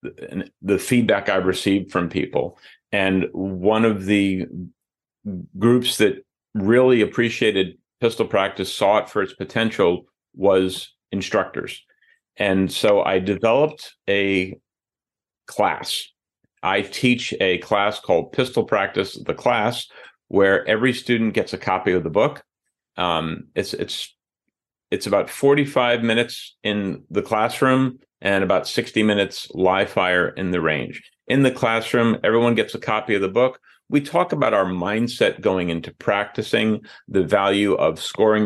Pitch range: 90-115 Hz